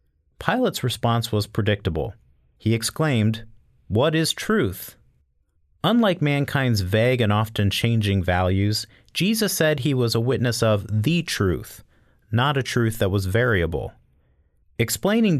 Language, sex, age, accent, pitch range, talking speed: English, male, 40-59, American, 100-130 Hz, 125 wpm